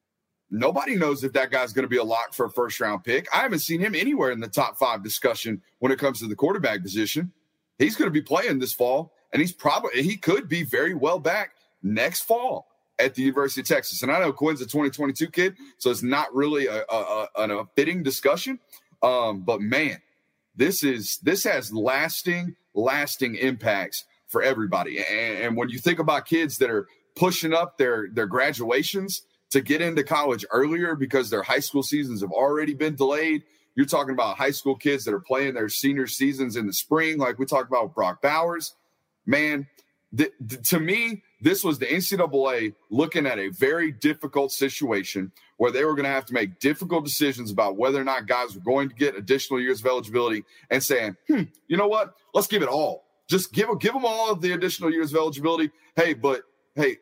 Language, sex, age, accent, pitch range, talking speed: English, male, 30-49, American, 130-165 Hz, 205 wpm